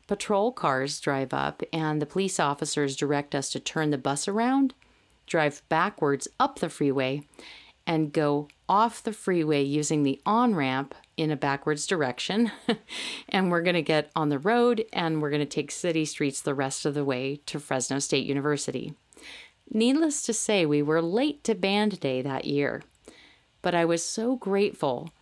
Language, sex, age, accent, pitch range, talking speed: English, female, 40-59, American, 145-205 Hz, 170 wpm